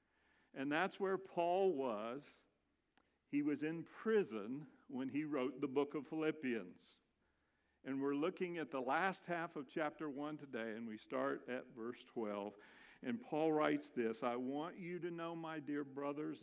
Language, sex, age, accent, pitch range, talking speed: English, male, 50-69, American, 130-180 Hz, 165 wpm